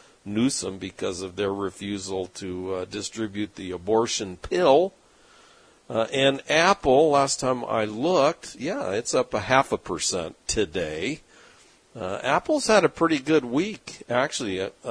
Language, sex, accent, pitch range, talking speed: English, male, American, 100-135 Hz, 140 wpm